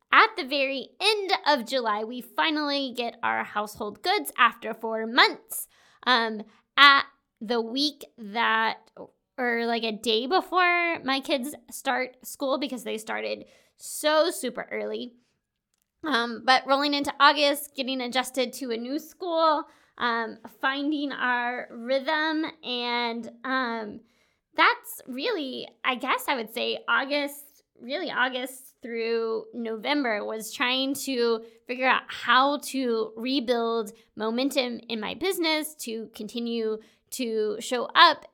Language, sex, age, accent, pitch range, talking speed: English, female, 20-39, American, 225-280 Hz, 125 wpm